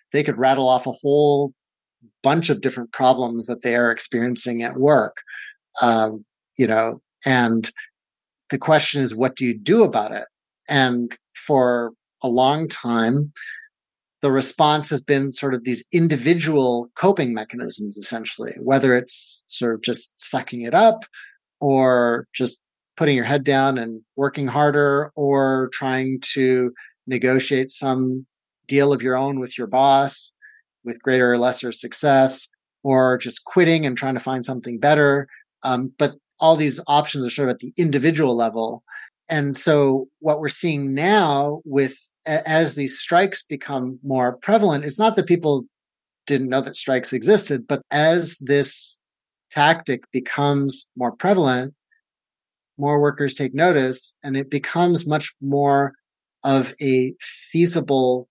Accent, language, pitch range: American, English, 125-150 Hz